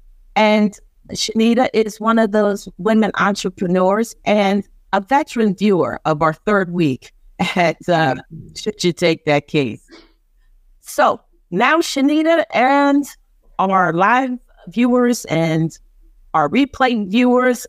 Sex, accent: female, American